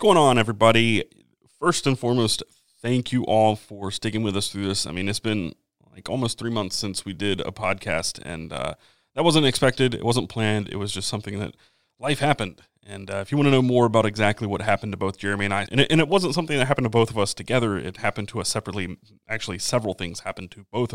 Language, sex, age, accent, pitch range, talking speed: English, male, 30-49, American, 100-120 Hz, 240 wpm